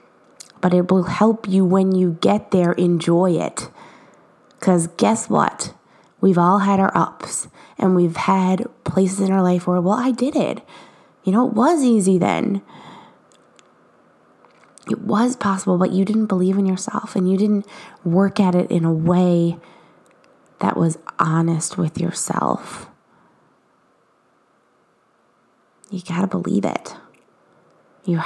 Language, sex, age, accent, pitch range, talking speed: English, female, 20-39, American, 180-235 Hz, 140 wpm